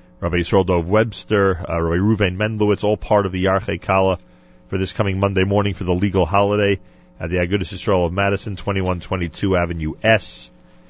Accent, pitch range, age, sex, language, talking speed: American, 90-120 Hz, 40-59, male, English, 170 wpm